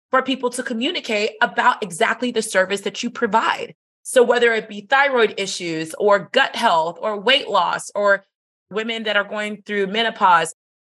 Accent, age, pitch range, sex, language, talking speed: American, 30-49, 205-260 Hz, female, English, 165 wpm